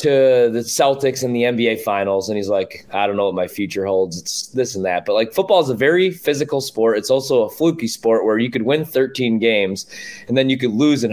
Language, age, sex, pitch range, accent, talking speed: English, 20-39, male, 120-170 Hz, American, 250 wpm